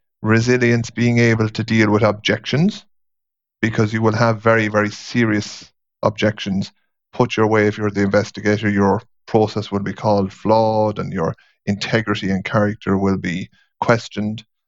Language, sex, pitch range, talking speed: English, male, 100-115 Hz, 145 wpm